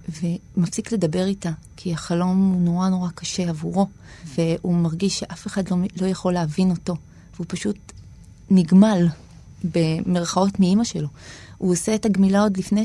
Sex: female